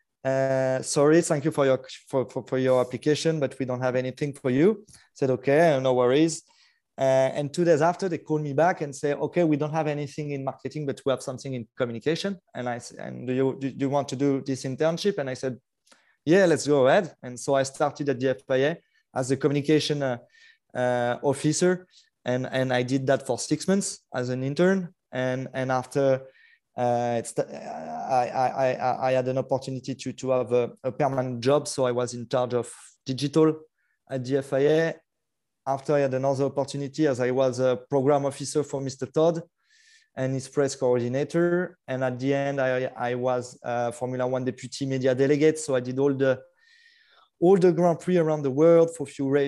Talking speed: 200 wpm